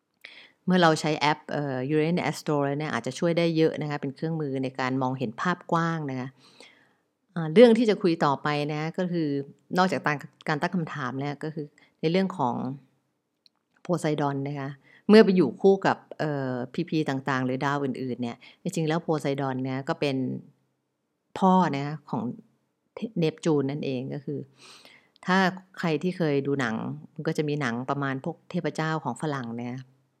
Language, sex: English, female